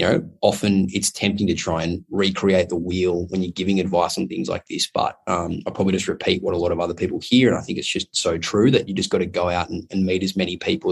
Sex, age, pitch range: male, 20-39, 90-105 Hz